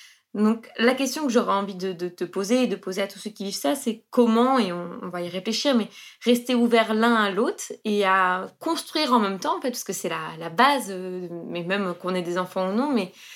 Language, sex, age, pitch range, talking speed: French, female, 20-39, 195-245 Hz, 245 wpm